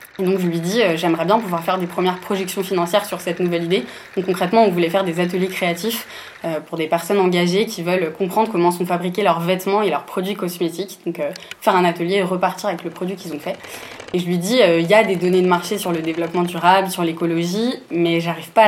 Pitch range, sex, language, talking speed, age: 170-200 Hz, female, French, 245 wpm, 20-39